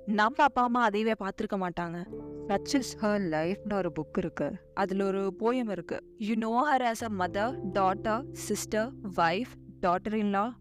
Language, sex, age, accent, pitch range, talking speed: Tamil, female, 20-39, native, 195-235 Hz, 130 wpm